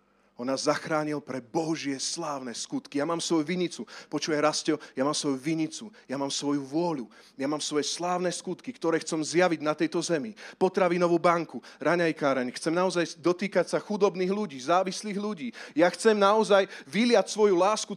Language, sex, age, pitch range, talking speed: Slovak, male, 30-49, 175-270 Hz, 165 wpm